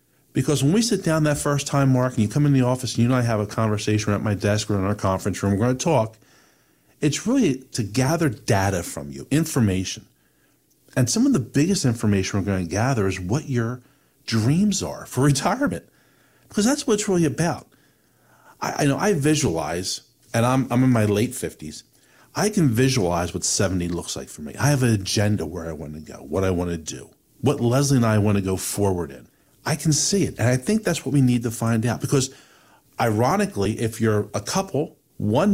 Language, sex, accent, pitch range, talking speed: English, male, American, 105-145 Hz, 220 wpm